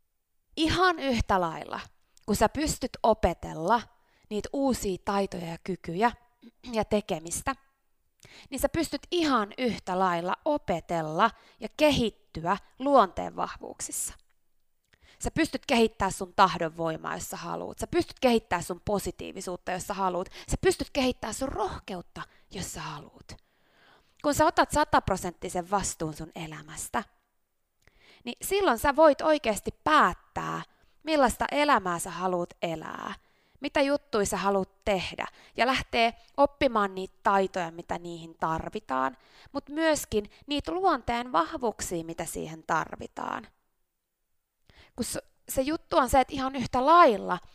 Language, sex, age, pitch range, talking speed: Finnish, female, 20-39, 185-275 Hz, 125 wpm